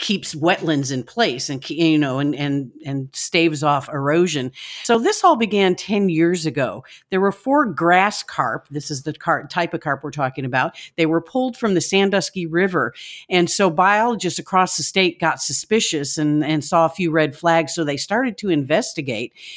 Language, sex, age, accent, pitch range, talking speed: English, female, 50-69, American, 150-195 Hz, 190 wpm